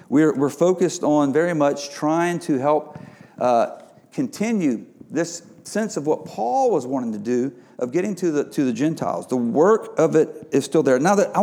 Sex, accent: male, American